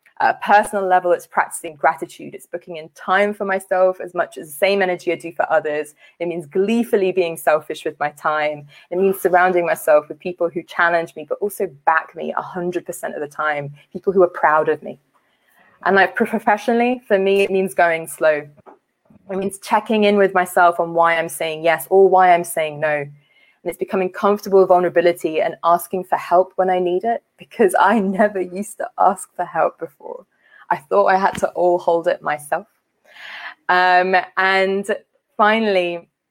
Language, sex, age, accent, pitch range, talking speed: English, female, 20-39, British, 165-195 Hz, 185 wpm